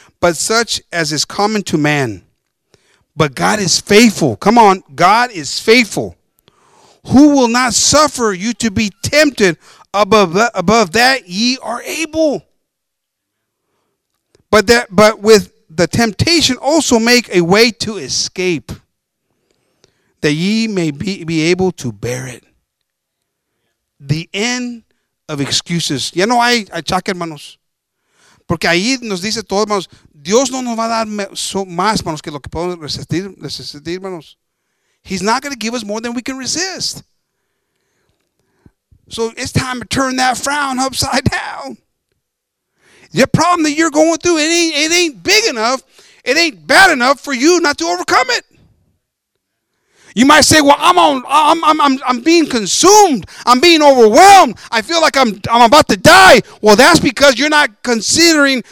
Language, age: English, 50-69